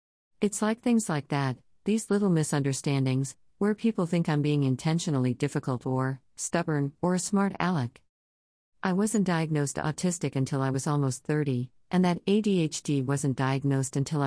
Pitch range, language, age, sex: 130-175 Hz, English, 50-69, female